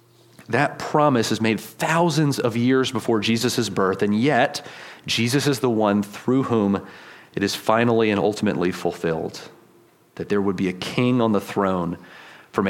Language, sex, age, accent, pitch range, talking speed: English, male, 30-49, American, 105-135 Hz, 160 wpm